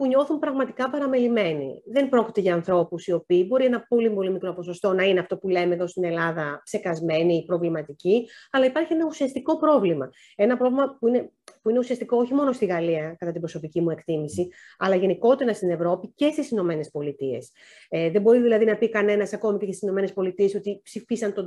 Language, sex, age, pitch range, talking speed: Greek, female, 30-49, 180-230 Hz, 195 wpm